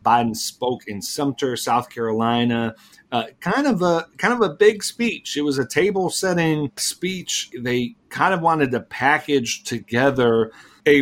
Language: English